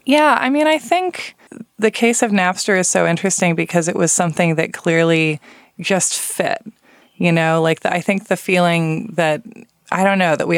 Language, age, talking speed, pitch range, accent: English, 20-39, 195 wpm, 145-185 Hz, American